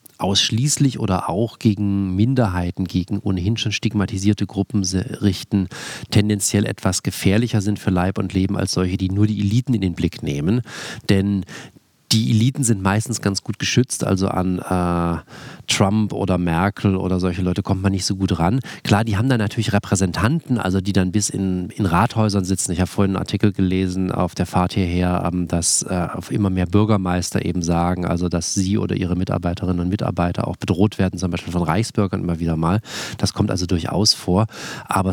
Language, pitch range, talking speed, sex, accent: German, 90-105 Hz, 185 wpm, male, German